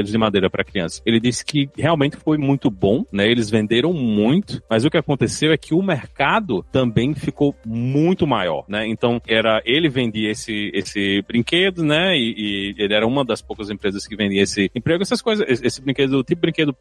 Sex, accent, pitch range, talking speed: male, Brazilian, 110-150 Hz, 200 wpm